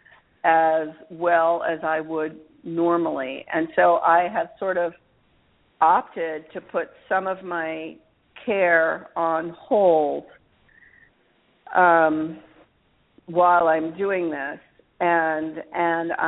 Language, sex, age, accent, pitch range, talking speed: English, female, 50-69, American, 150-170 Hz, 105 wpm